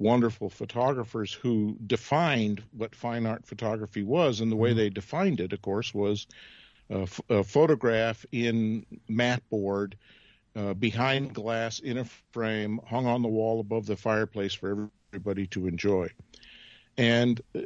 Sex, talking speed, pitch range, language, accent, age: male, 145 wpm, 105-135 Hz, English, American, 50-69